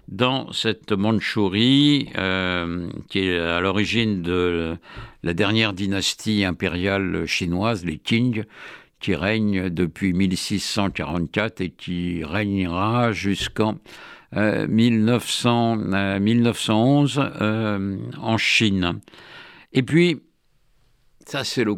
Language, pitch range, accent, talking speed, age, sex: French, 100-130 Hz, French, 100 wpm, 60-79, male